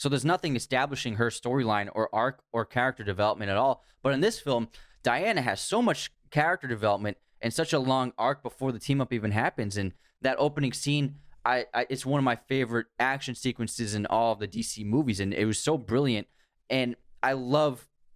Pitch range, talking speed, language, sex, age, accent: 115-140 Hz, 200 wpm, English, male, 20-39, American